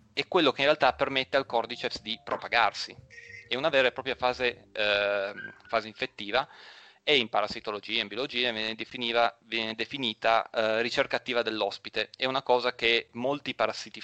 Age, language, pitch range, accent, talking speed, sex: 30-49, Italian, 105-120 Hz, native, 165 wpm, male